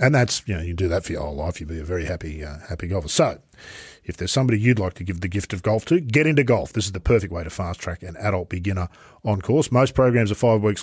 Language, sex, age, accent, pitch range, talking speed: English, male, 40-59, Australian, 95-130 Hz, 300 wpm